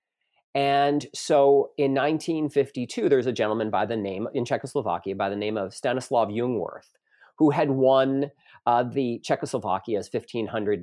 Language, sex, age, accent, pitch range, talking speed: English, male, 40-59, American, 115-155 Hz, 140 wpm